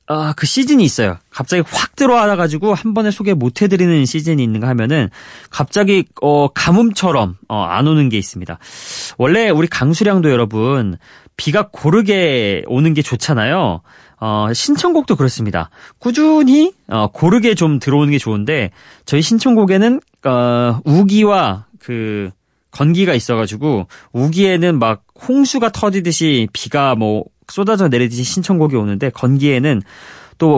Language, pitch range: Korean, 120-185 Hz